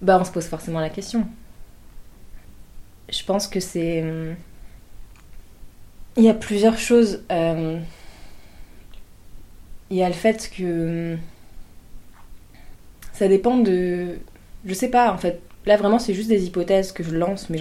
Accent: French